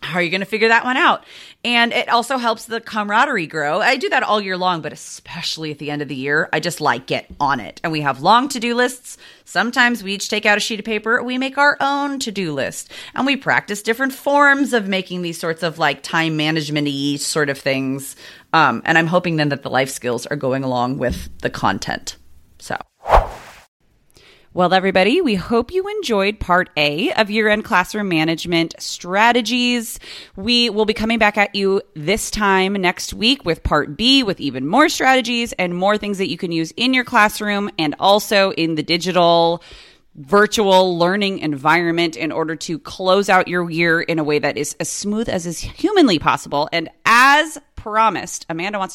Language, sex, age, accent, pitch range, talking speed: English, female, 30-49, American, 155-225 Hz, 195 wpm